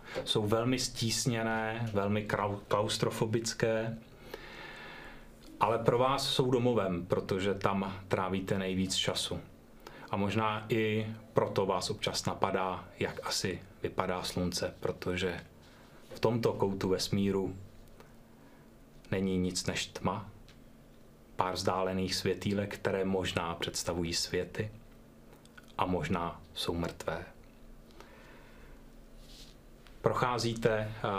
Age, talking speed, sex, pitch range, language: 30-49, 90 wpm, male, 90-110 Hz, Czech